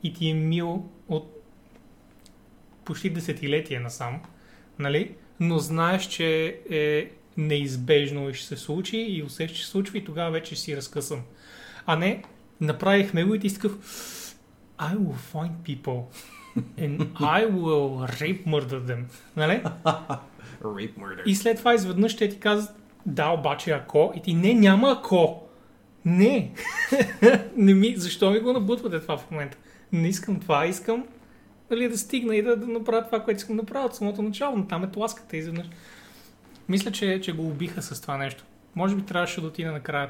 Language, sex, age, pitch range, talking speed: Bulgarian, male, 30-49, 150-200 Hz, 170 wpm